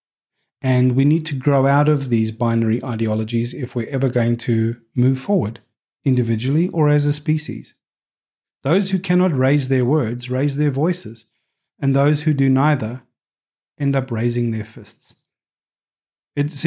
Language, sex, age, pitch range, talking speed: English, male, 40-59, 120-150 Hz, 150 wpm